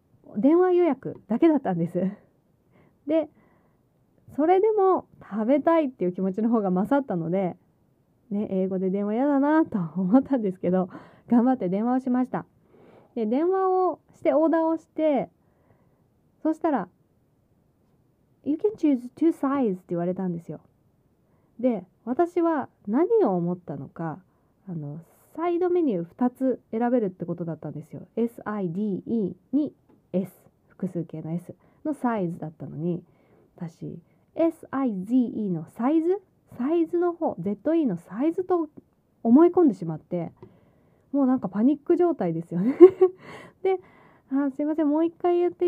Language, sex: Japanese, female